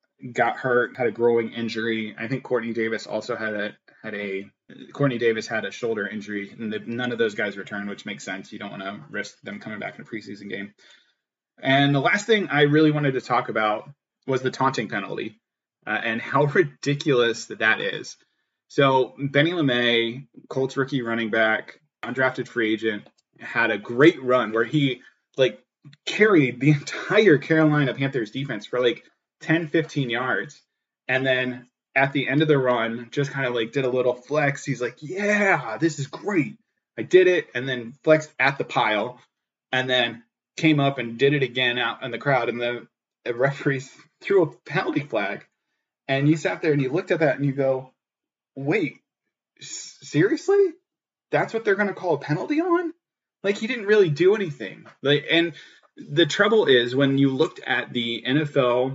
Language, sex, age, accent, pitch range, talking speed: English, male, 20-39, American, 120-155 Hz, 185 wpm